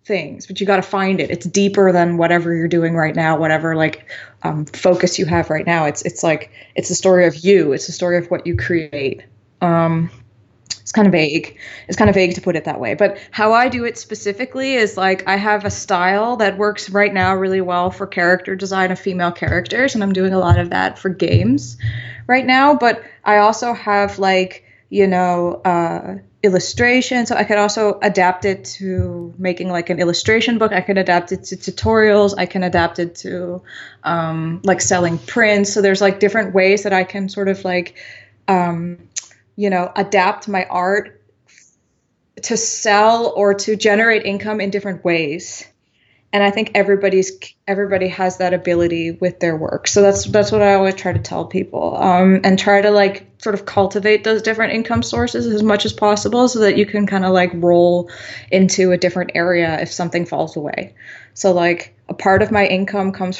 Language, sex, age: English, female, 20-39